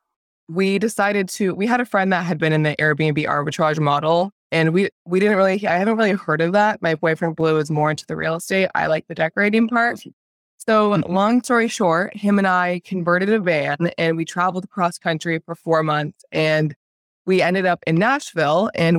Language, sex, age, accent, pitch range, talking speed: English, female, 20-39, American, 160-200 Hz, 205 wpm